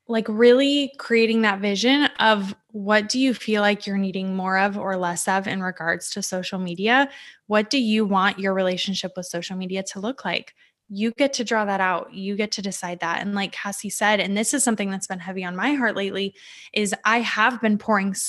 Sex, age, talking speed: female, 20-39, 215 wpm